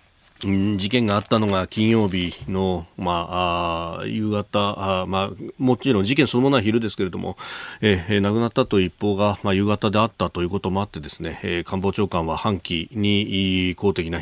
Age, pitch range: 40-59, 95-115 Hz